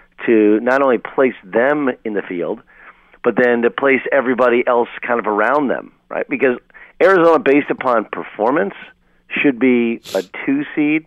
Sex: male